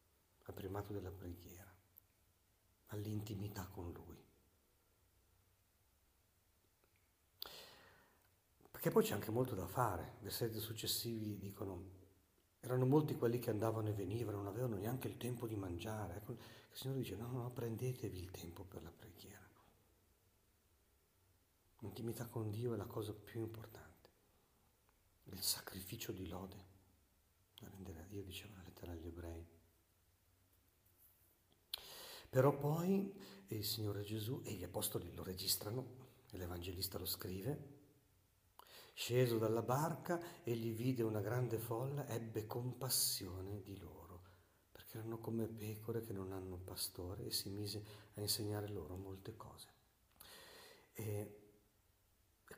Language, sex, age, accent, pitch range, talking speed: Italian, male, 50-69, native, 95-115 Hz, 125 wpm